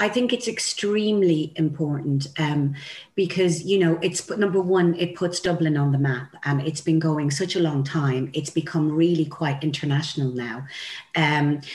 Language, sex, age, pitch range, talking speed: English, female, 40-59, 160-195 Hz, 175 wpm